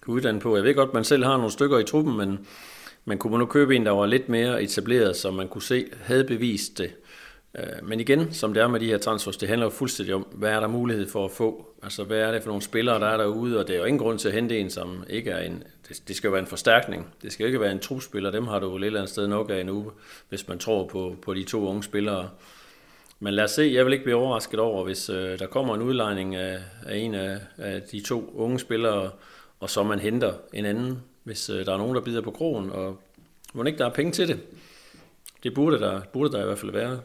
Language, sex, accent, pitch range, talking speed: Danish, male, native, 100-120 Hz, 260 wpm